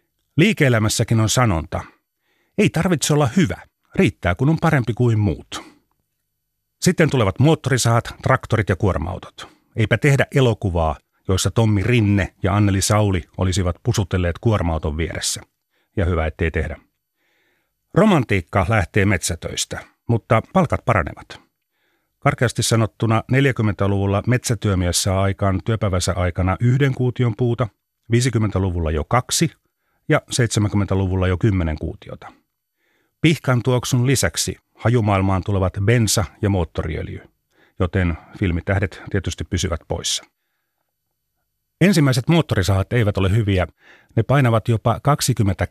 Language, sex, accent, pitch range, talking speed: Finnish, male, native, 95-120 Hz, 105 wpm